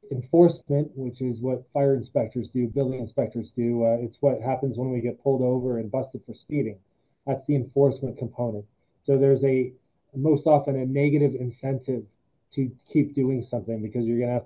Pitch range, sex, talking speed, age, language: 125-150 Hz, male, 185 wpm, 20-39, English